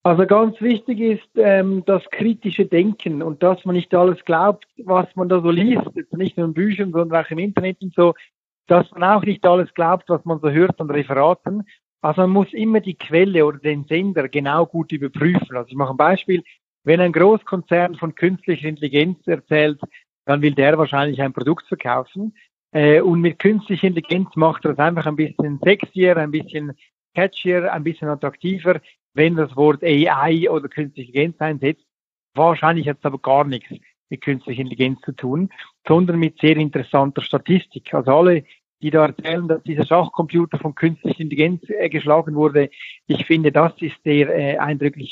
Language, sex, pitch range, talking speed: English, male, 150-185 Hz, 180 wpm